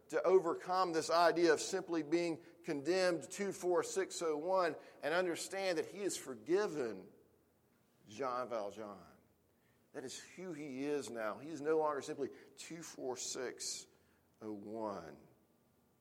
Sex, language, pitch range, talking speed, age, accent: male, English, 130-175 Hz, 110 wpm, 40-59, American